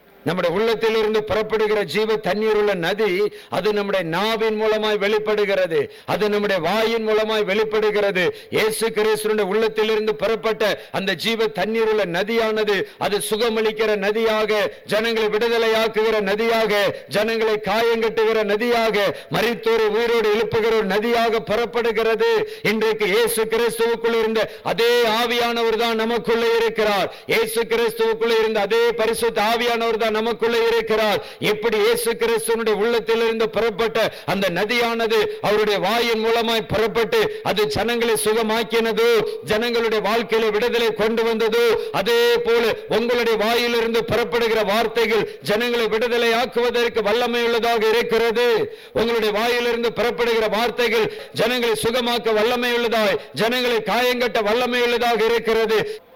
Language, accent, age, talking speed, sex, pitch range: Tamil, native, 50-69, 55 wpm, male, 215-240 Hz